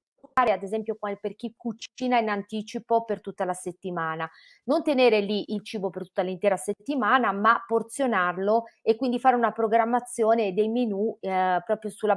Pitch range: 195-245 Hz